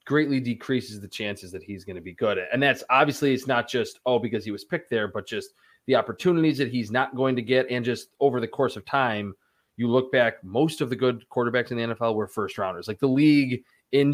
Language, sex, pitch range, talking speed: English, male, 110-135 Hz, 240 wpm